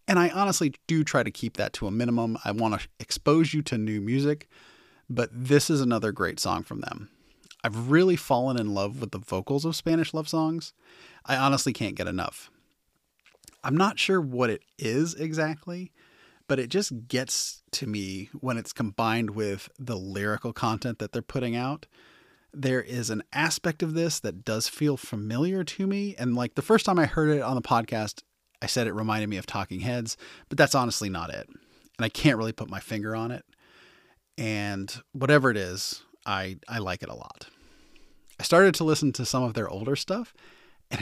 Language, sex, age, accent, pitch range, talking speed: English, male, 30-49, American, 110-155 Hz, 195 wpm